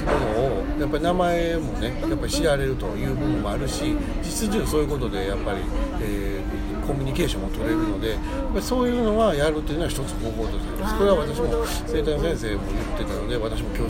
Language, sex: Japanese, male